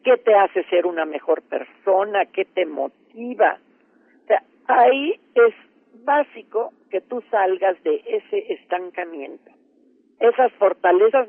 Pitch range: 180-295 Hz